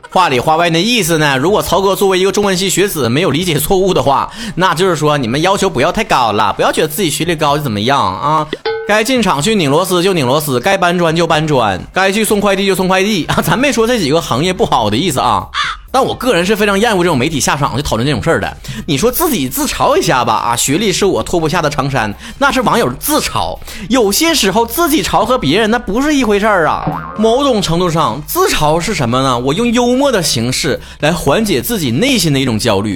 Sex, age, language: male, 30-49, Chinese